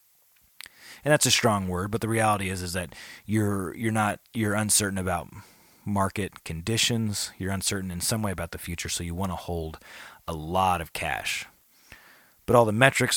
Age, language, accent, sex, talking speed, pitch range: 30-49, English, American, male, 180 wpm, 85-110 Hz